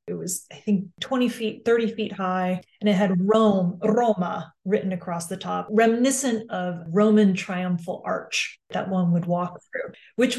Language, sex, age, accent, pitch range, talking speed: English, female, 30-49, American, 180-220 Hz, 170 wpm